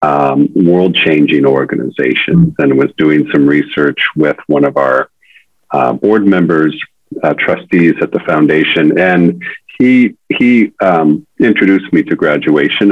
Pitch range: 75-100 Hz